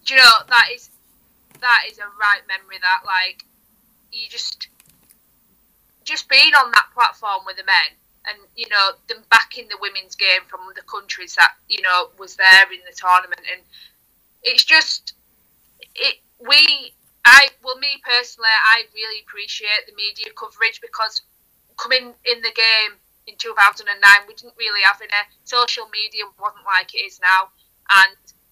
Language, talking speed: English, 170 wpm